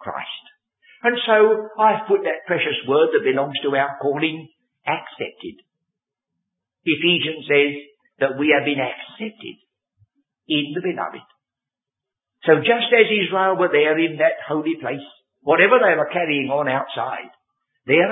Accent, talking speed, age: British, 135 wpm, 60-79